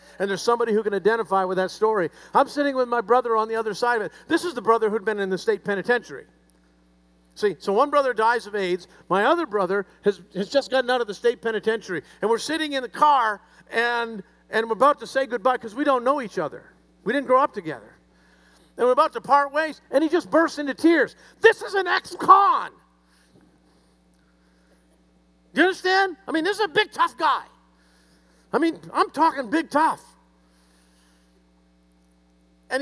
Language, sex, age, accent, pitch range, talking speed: English, male, 50-69, American, 185-280 Hz, 195 wpm